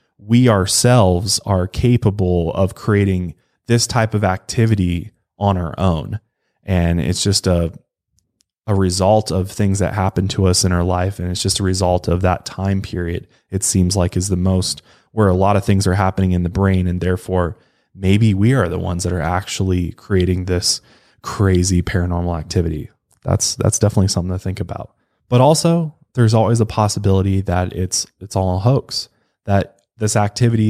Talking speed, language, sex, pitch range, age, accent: 175 wpm, English, male, 90-105 Hz, 20-39, American